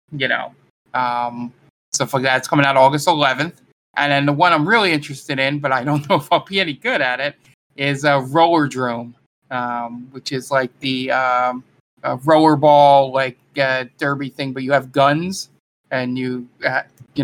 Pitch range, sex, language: 130-150 Hz, male, English